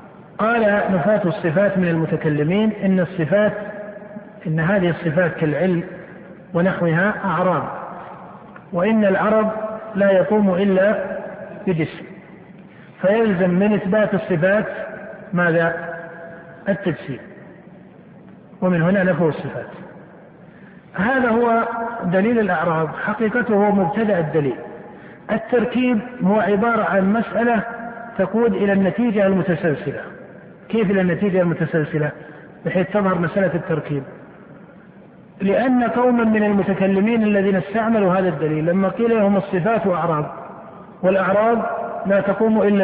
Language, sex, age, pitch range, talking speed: Arabic, male, 50-69, 180-220 Hz, 95 wpm